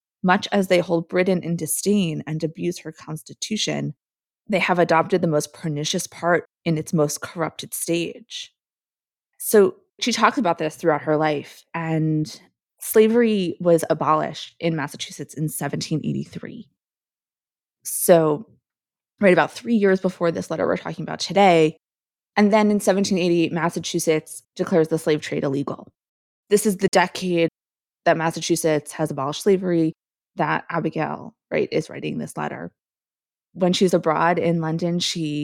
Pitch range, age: 155-185 Hz, 20-39